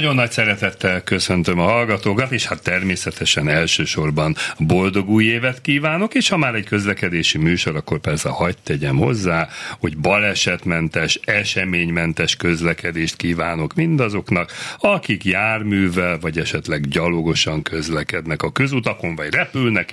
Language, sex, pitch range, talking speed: Hungarian, male, 90-120 Hz, 125 wpm